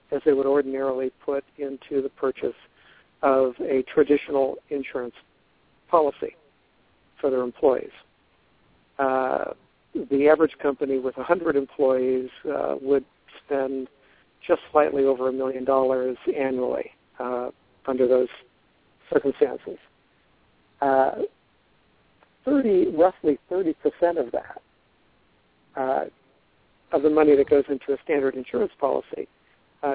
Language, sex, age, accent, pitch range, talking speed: English, male, 60-79, American, 130-150 Hz, 110 wpm